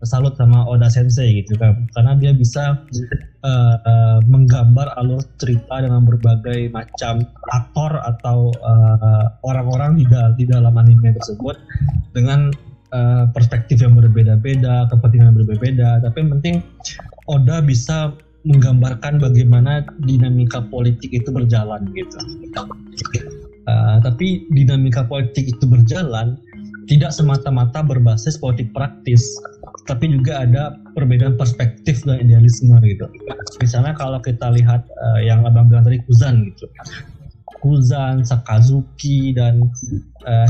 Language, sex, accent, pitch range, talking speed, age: Indonesian, male, native, 115-135 Hz, 115 wpm, 20-39